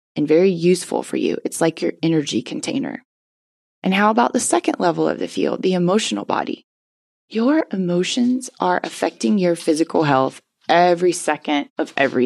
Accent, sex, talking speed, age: American, female, 160 wpm, 20-39